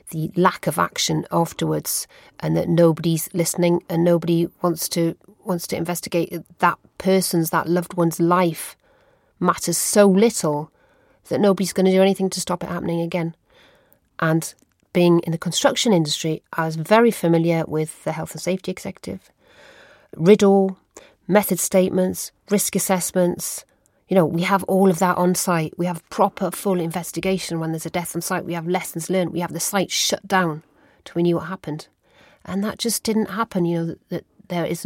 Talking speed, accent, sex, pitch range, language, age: 175 wpm, British, female, 165-190 Hz, English, 40-59